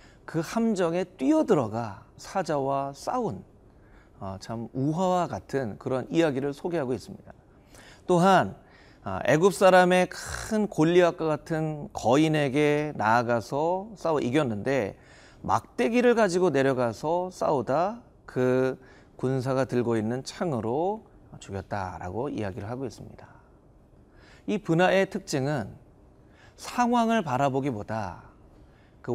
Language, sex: Korean, male